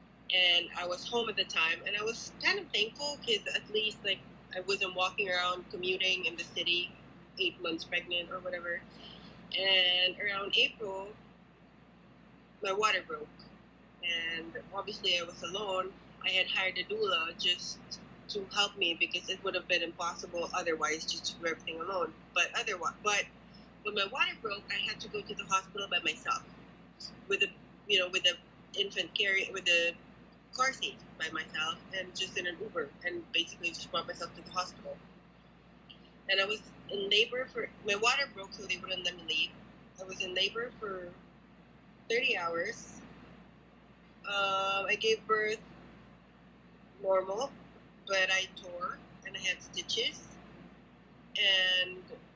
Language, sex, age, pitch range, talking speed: English, female, 20-39, 180-215 Hz, 160 wpm